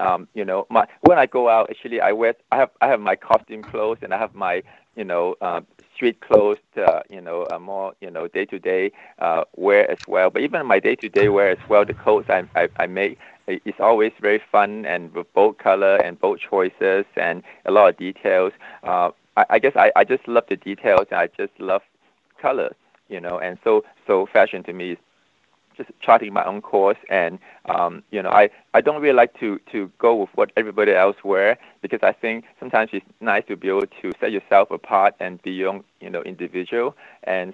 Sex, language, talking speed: male, English, 215 wpm